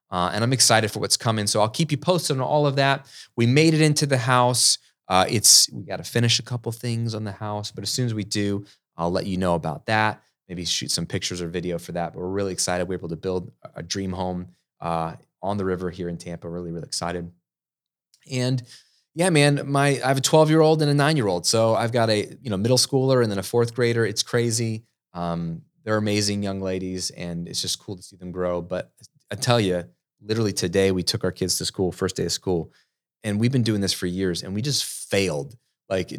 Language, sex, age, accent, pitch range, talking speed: English, male, 20-39, American, 95-120 Hz, 240 wpm